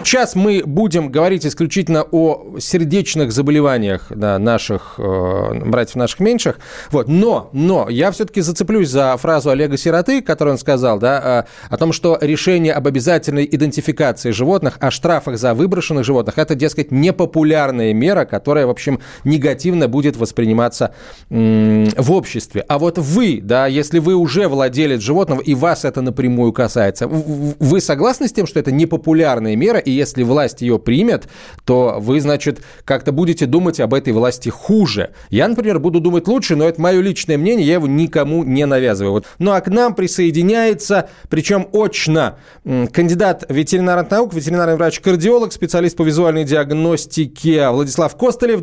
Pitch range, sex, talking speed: 130-175 Hz, male, 150 wpm